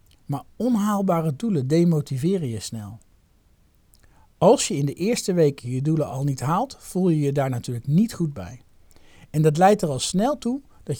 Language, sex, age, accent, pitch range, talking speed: Dutch, male, 50-69, Dutch, 110-185 Hz, 180 wpm